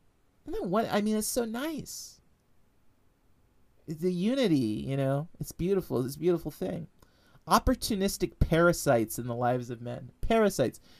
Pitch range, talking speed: 130-170 Hz, 130 wpm